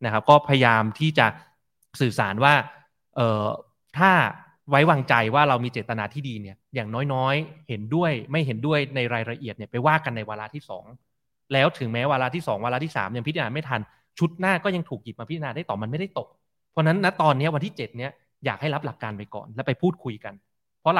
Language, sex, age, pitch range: Thai, male, 20-39, 115-145 Hz